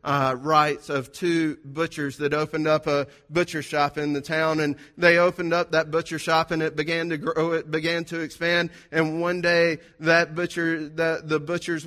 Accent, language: American, English